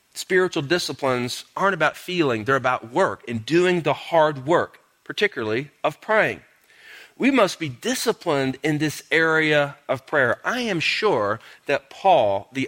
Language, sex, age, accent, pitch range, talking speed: English, male, 40-59, American, 115-180 Hz, 145 wpm